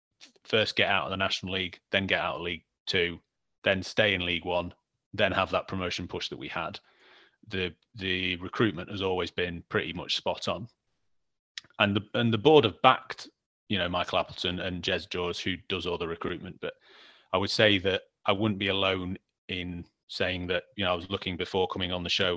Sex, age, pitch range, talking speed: male, 30-49, 90-105 Hz, 205 wpm